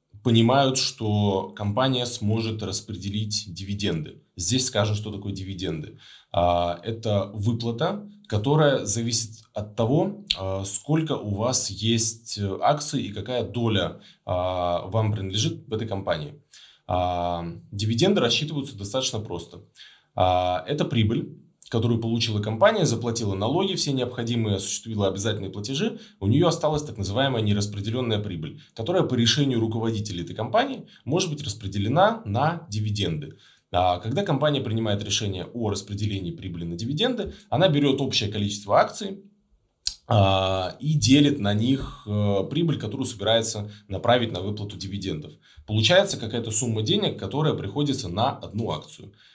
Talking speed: 125 wpm